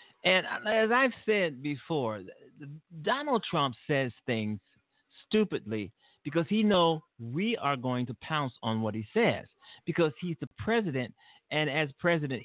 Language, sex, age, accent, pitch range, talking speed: English, male, 50-69, American, 120-195 Hz, 140 wpm